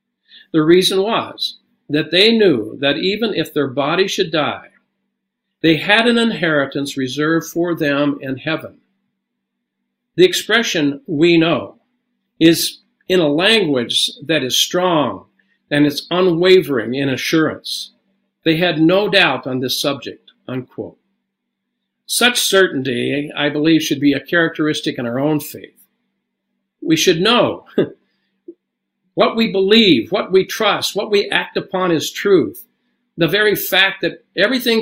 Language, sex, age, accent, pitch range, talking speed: English, male, 60-79, American, 145-210 Hz, 135 wpm